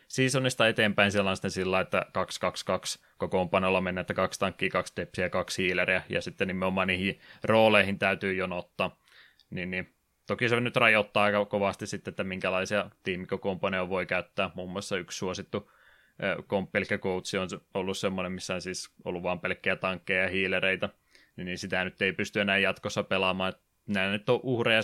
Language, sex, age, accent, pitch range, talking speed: Finnish, male, 20-39, native, 95-105 Hz, 175 wpm